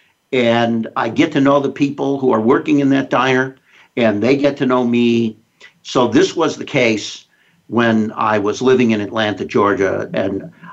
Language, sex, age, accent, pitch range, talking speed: English, male, 60-79, American, 115-145 Hz, 180 wpm